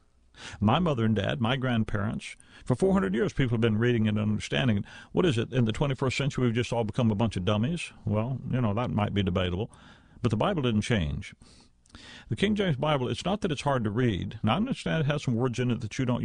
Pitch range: 105-135 Hz